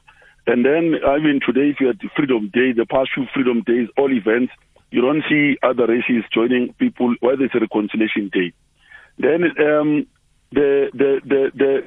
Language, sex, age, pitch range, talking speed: English, male, 50-69, 125-160 Hz, 180 wpm